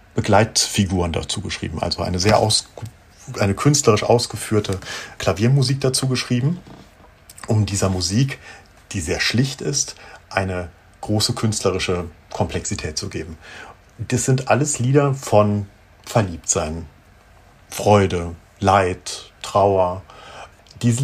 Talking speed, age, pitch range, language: 105 wpm, 50-69, 95-120 Hz, German